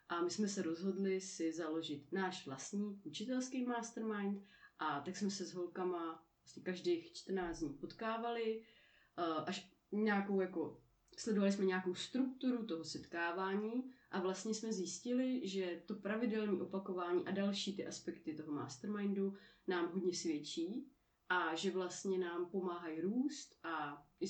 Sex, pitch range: female, 165-210 Hz